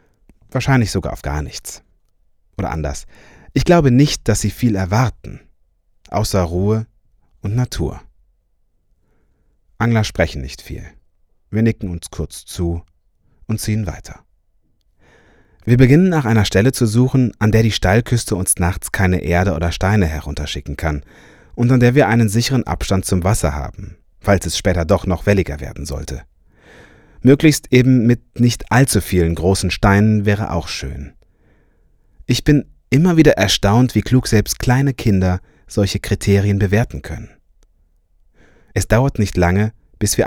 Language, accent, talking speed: German, German, 145 wpm